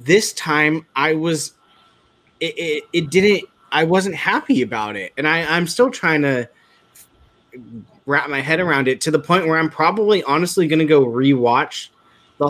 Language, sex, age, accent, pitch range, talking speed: English, male, 20-39, American, 125-170 Hz, 175 wpm